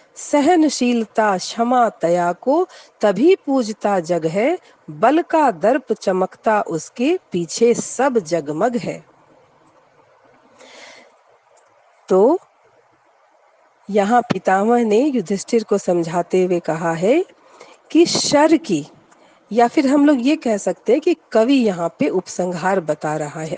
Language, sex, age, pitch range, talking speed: Hindi, female, 40-59, 185-270 Hz, 115 wpm